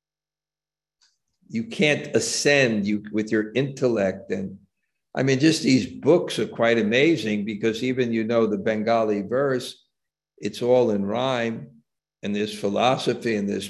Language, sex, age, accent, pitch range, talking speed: English, male, 50-69, American, 100-130 Hz, 140 wpm